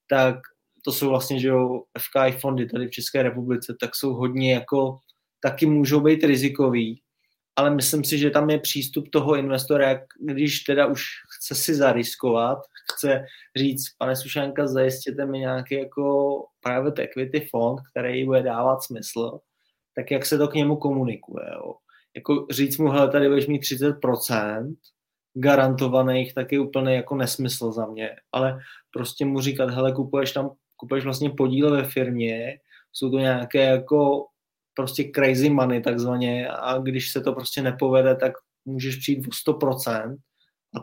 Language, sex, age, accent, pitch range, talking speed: Czech, male, 20-39, native, 130-140 Hz, 155 wpm